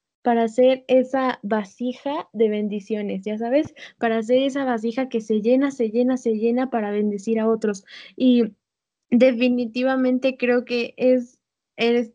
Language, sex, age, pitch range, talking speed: Spanish, female, 20-39, 225-260 Hz, 145 wpm